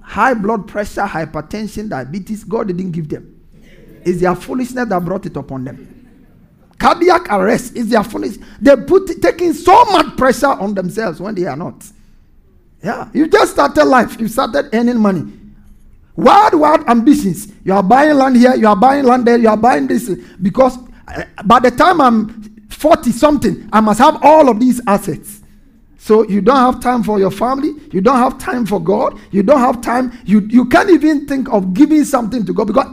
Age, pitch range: 50-69, 195-260 Hz